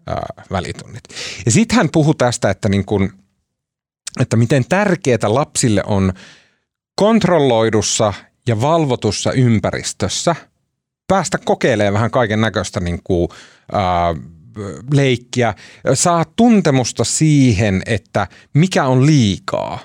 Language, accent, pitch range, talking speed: Finnish, native, 105-150 Hz, 100 wpm